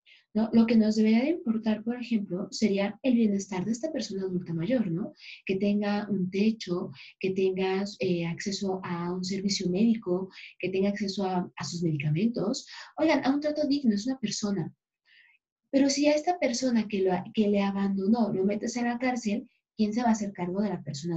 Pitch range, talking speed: 195-245 Hz, 195 wpm